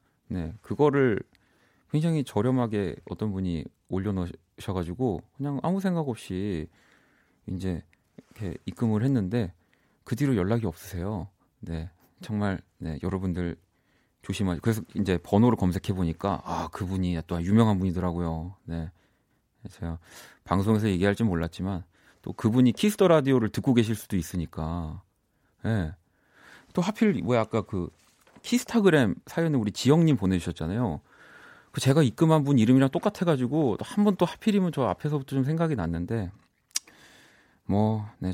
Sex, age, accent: male, 40-59, native